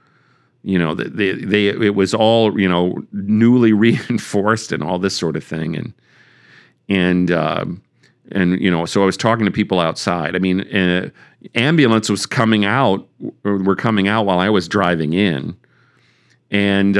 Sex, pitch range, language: male, 90-110 Hz, English